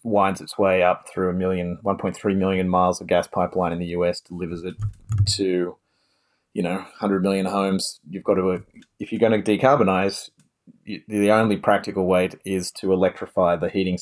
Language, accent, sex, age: English, Australian, male, 30-49